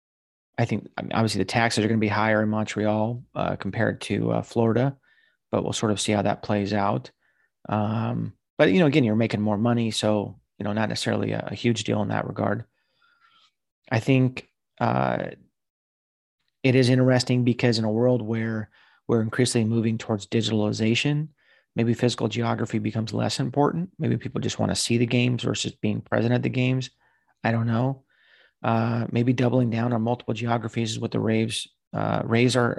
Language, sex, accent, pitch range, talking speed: English, male, American, 105-125 Hz, 180 wpm